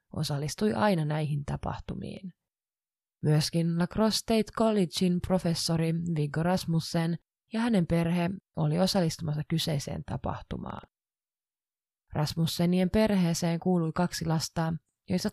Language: Finnish